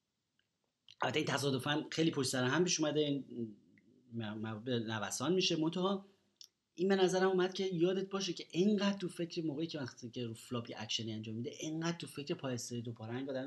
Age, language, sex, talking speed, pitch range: 30-49, Persian, male, 180 wpm, 110-155 Hz